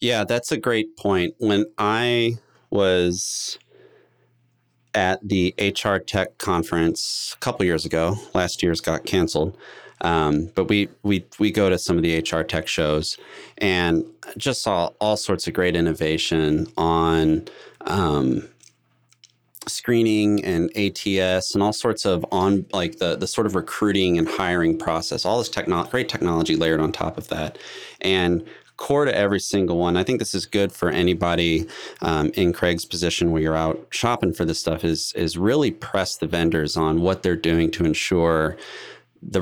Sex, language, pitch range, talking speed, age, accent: male, English, 80-100 Hz, 165 wpm, 30-49, American